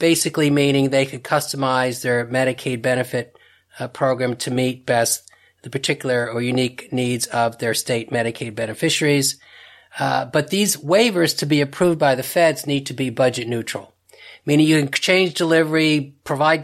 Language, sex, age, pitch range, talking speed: English, male, 40-59, 125-155 Hz, 160 wpm